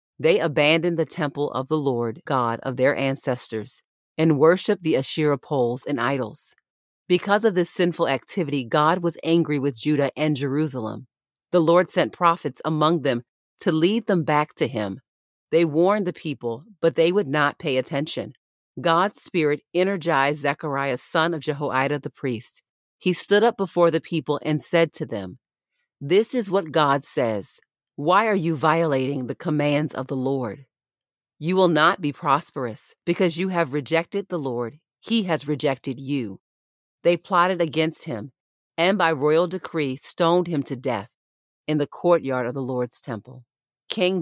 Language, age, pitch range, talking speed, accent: English, 40-59, 135-170 Hz, 165 wpm, American